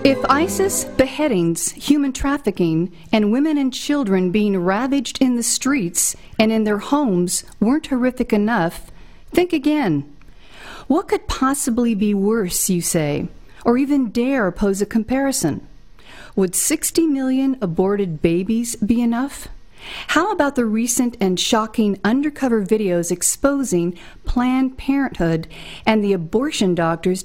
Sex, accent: female, American